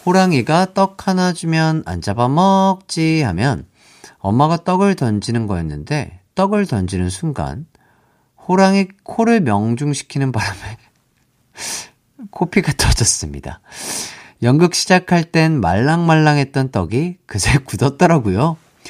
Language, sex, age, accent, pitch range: Korean, male, 40-59, native, 105-160 Hz